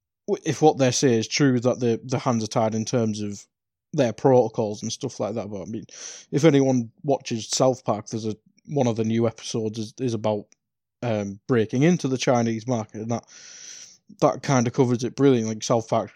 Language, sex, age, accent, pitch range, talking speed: English, male, 20-39, British, 110-130 Hz, 210 wpm